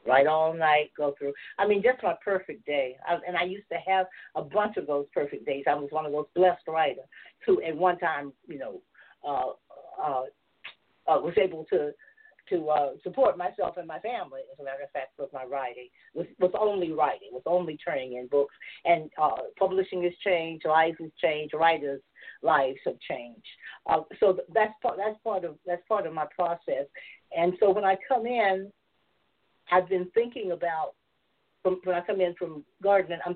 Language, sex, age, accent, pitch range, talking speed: English, female, 40-59, American, 150-190 Hz, 195 wpm